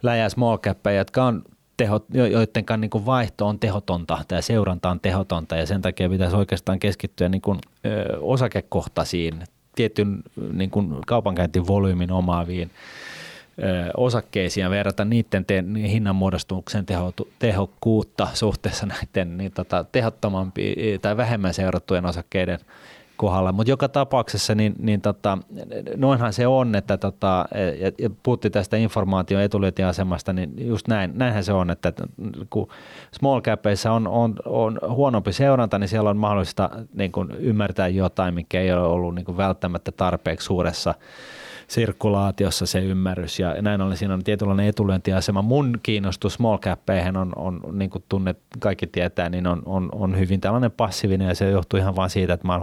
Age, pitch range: 30-49, 90-110 Hz